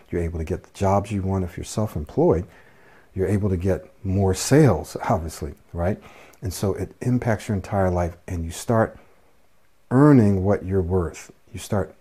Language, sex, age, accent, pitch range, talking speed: English, male, 50-69, American, 85-100 Hz, 175 wpm